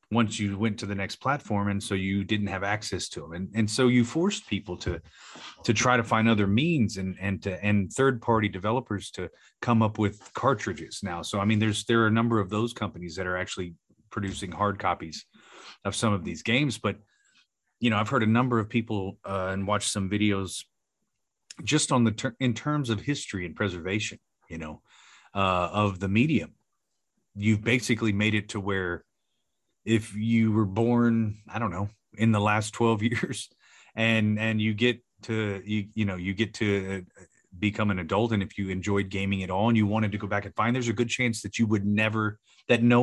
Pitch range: 100-115 Hz